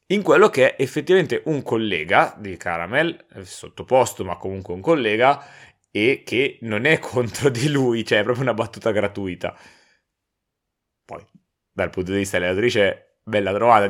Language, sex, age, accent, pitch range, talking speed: Italian, male, 30-49, native, 100-125 Hz, 150 wpm